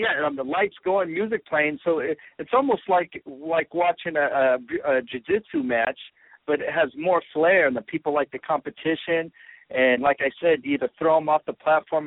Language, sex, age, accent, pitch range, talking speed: English, male, 50-69, American, 135-185 Hz, 200 wpm